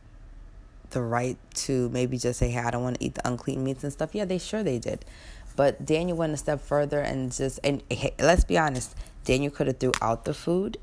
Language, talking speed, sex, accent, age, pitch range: English, 235 wpm, female, American, 20-39, 120-145 Hz